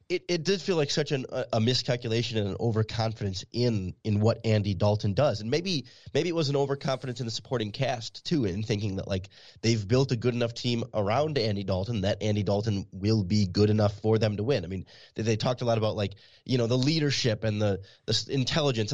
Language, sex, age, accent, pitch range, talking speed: English, male, 30-49, American, 105-130 Hz, 230 wpm